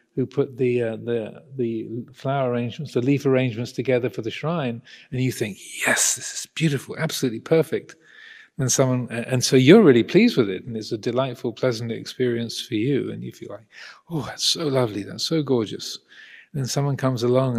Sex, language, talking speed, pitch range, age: male, English, 195 wpm, 120-150 Hz, 40-59